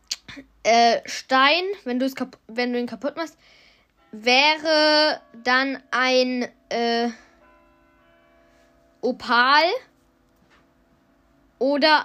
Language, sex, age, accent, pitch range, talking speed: German, female, 10-29, German, 225-285 Hz, 80 wpm